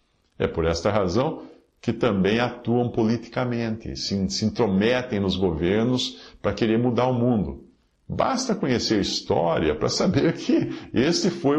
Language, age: Portuguese, 50-69